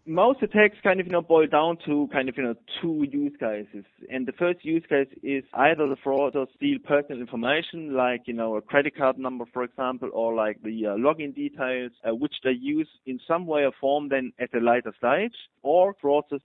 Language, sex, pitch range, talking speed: English, male, 125-165 Hz, 225 wpm